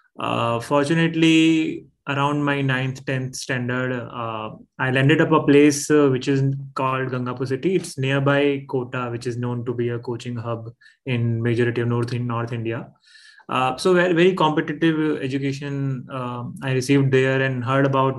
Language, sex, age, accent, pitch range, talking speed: English, male, 20-39, Indian, 125-145 Hz, 165 wpm